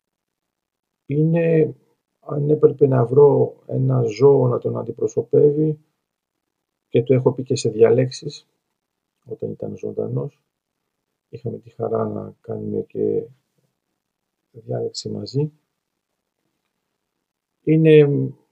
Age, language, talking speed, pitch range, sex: 50-69, Greek, 95 wpm, 110-160 Hz, male